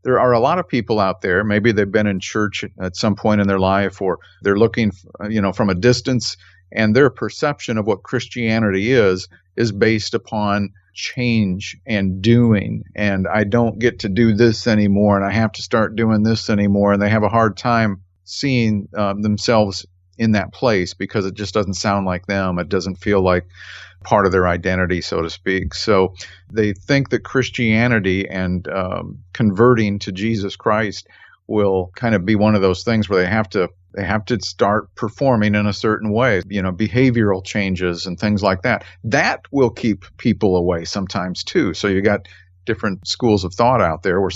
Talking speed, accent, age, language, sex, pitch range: 195 wpm, American, 50-69, English, male, 95-115 Hz